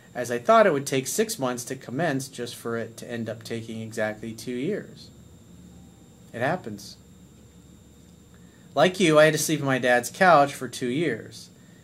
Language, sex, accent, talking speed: English, male, American, 175 wpm